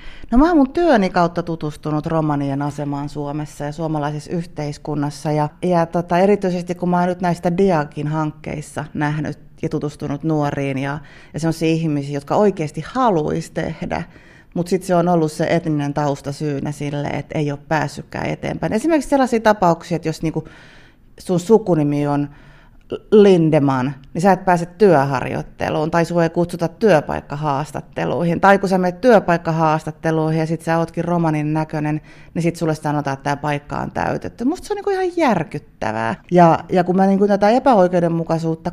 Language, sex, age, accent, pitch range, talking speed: Finnish, female, 30-49, native, 150-180 Hz, 165 wpm